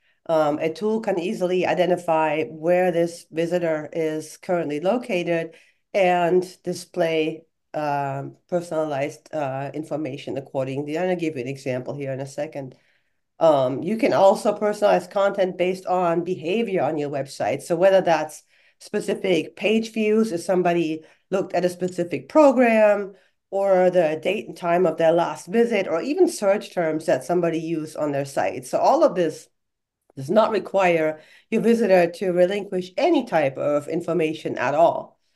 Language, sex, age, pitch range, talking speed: English, female, 40-59, 165-205 Hz, 155 wpm